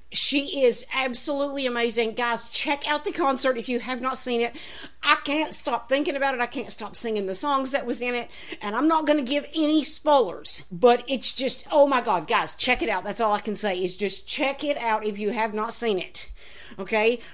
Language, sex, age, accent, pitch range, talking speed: English, female, 50-69, American, 200-265 Hz, 230 wpm